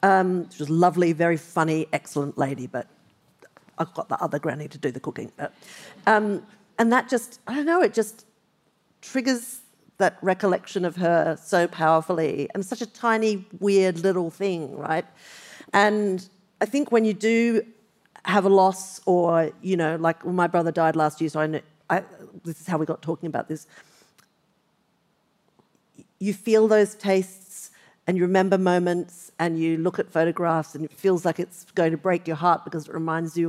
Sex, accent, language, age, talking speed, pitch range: female, Australian, English, 50-69, 170 wpm, 165-195 Hz